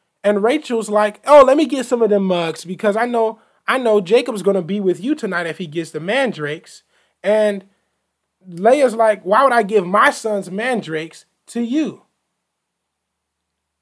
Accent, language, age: American, English, 20-39